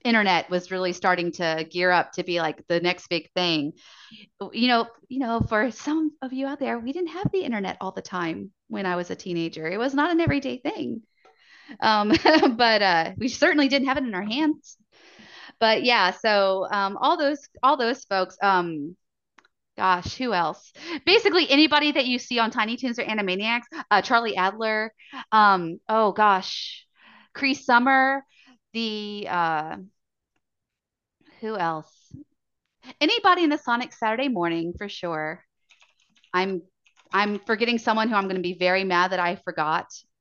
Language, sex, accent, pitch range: English, female, American, 180-255 Hz